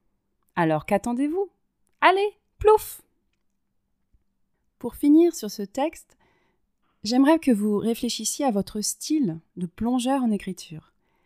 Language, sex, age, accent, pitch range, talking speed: French, female, 30-49, French, 170-245 Hz, 105 wpm